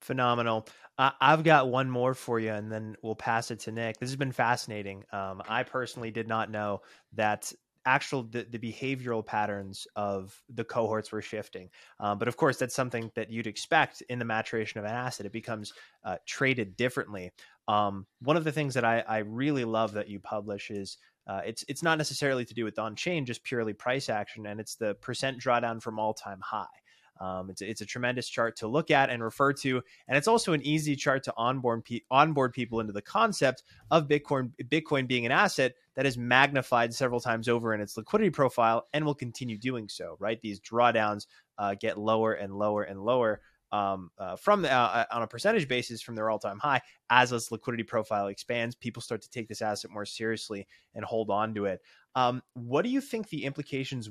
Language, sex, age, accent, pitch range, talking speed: English, male, 20-39, American, 105-130 Hz, 205 wpm